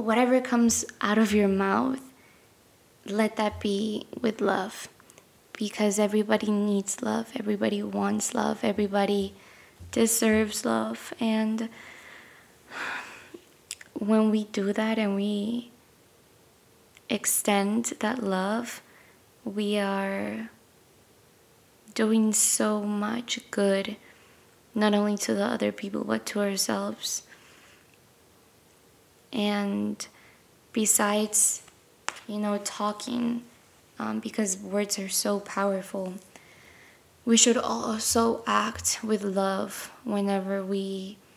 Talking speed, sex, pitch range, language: 95 wpm, female, 195-220 Hz, English